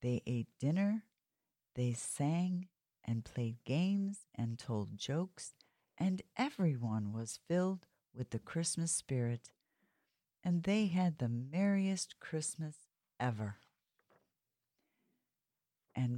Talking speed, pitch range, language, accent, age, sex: 100 wpm, 120-170 Hz, English, American, 50-69, female